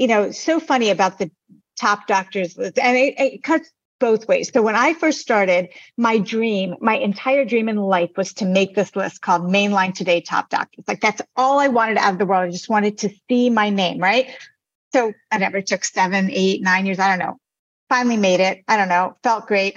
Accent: American